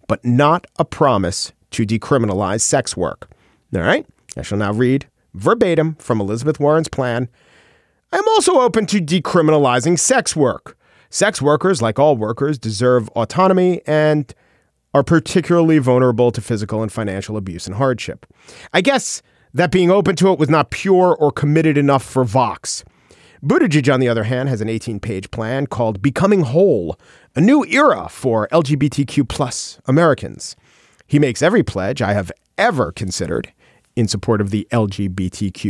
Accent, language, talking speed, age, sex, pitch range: American, English, 155 wpm, 40-59, male, 110-150 Hz